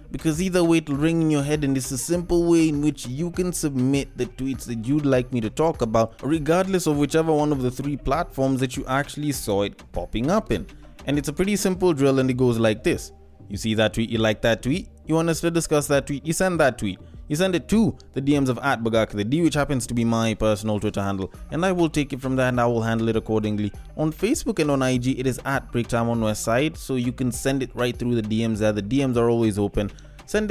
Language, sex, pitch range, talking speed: English, male, 110-145 Hz, 260 wpm